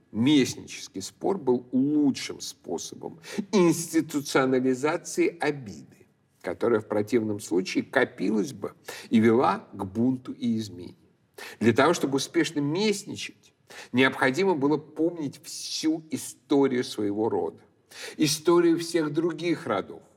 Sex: male